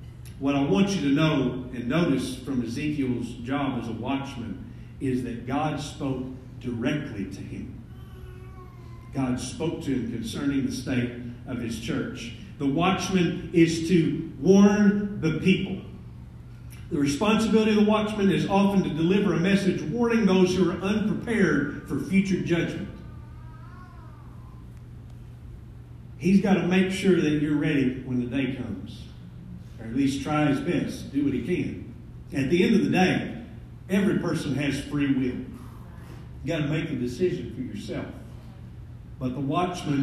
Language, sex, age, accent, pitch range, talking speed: English, male, 50-69, American, 125-175 Hz, 150 wpm